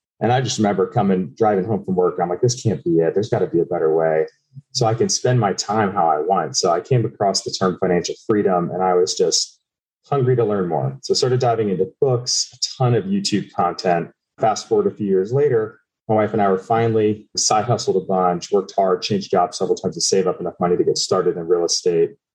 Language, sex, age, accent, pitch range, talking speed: English, male, 30-49, American, 95-135 Hz, 245 wpm